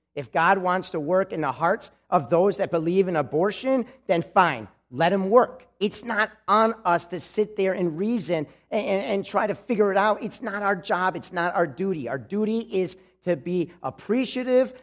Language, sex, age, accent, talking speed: English, male, 40-59, American, 200 wpm